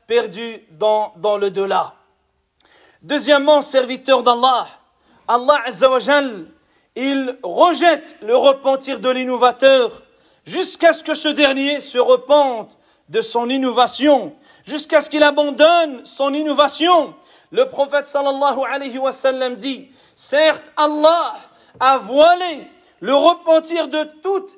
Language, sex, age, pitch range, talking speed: French, male, 40-59, 265-315 Hz, 120 wpm